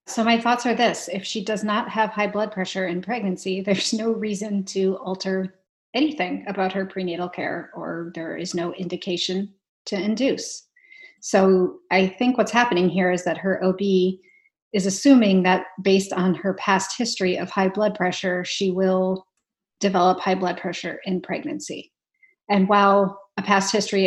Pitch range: 185-215 Hz